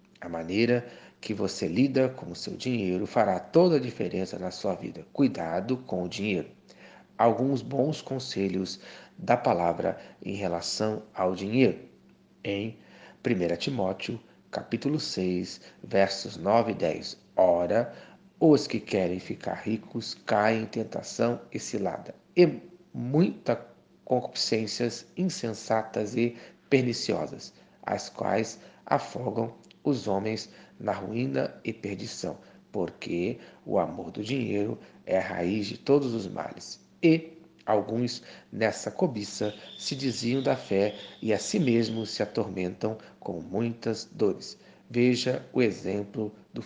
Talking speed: 125 wpm